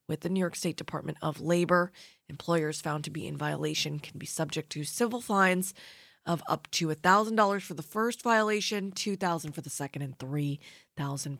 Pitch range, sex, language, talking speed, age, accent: 155-200 Hz, female, English, 180 wpm, 20-39, American